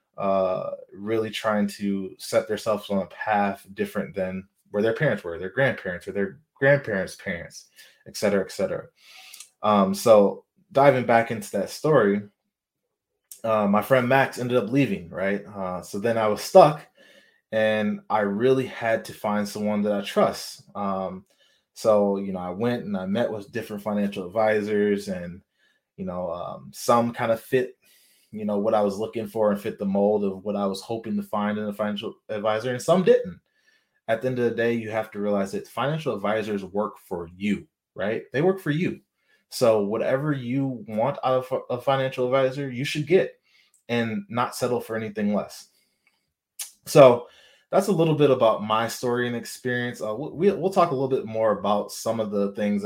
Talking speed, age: 185 wpm, 20-39